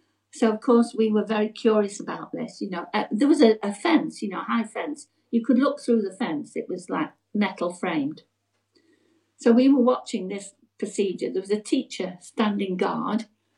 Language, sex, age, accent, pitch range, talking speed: English, female, 60-79, British, 205-290 Hz, 200 wpm